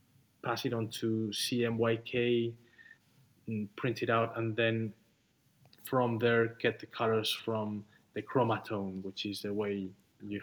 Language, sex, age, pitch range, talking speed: English, male, 30-49, 115-130 Hz, 140 wpm